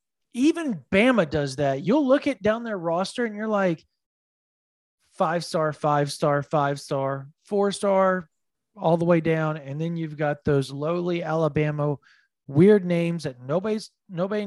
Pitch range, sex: 140-205 Hz, male